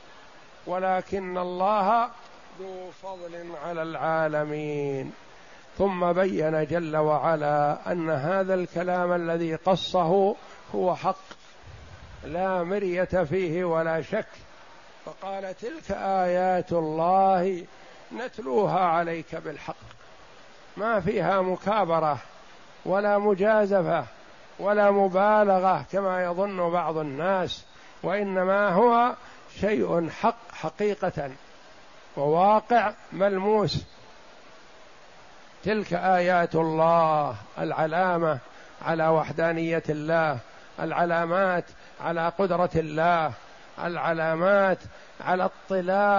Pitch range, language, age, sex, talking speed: 165-195 Hz, Arabic, 60-79, male, 80 wpm